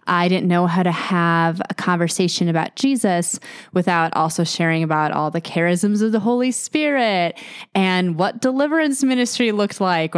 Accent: American